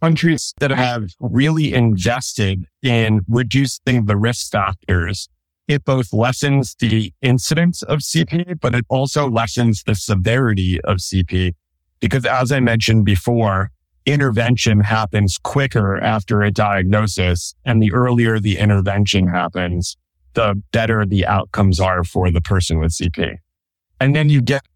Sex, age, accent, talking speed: male, 30-49, American, 135 wpm